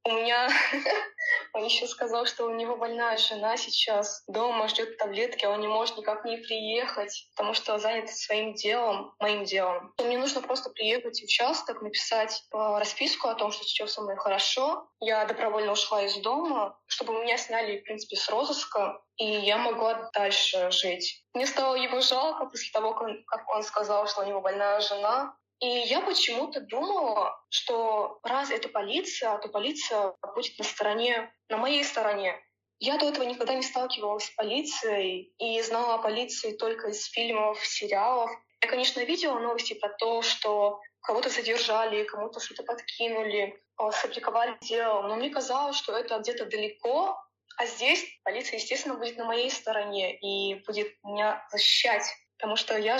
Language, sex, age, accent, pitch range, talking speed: Russian, female, 20-39, native, 210-240 Hz, 160 wpm